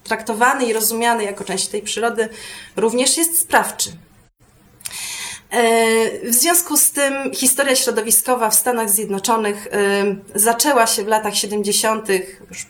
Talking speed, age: 120 wpm, 20-39